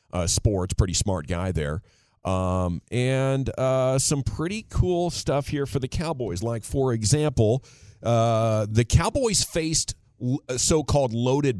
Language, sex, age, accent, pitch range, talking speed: English, male, 40-59, American, 105-135 Hz, 135 wpm